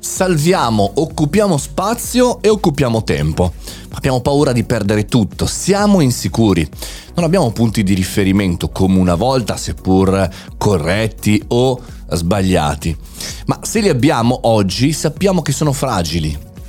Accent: native